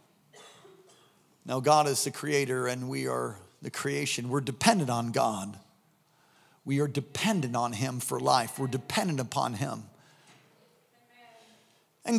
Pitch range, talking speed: 150-190 Hz, 130 wpm